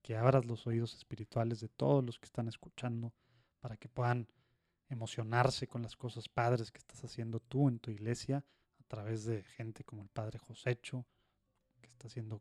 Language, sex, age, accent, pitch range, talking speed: Spanish, male, 30-49, Mexican, 115-140 Hz, 180 wpm